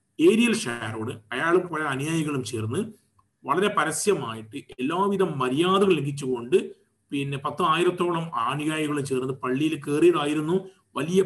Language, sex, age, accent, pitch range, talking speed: Malayalam, male, 30-49, native, 140-210 Hz, 90 wpm